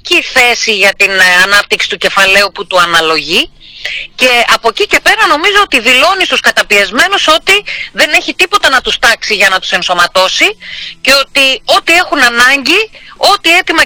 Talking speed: 160 wpm